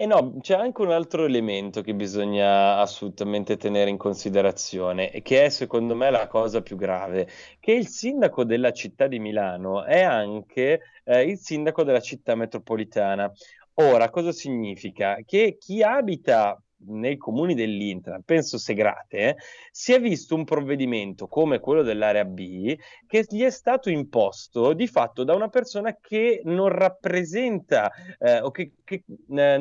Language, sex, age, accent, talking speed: Italian, male, 30-49, native, 155 wpm